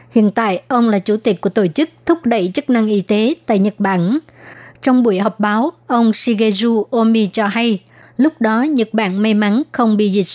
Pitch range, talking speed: 210-245 Hz, 210 wpm